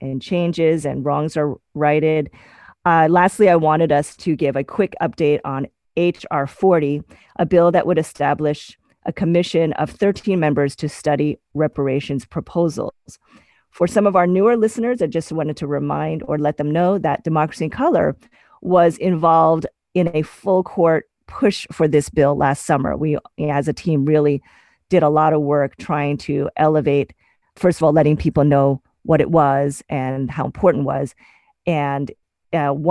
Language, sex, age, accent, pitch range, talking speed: English, female, 30-49, American, 145-170 Hz, 170 wpm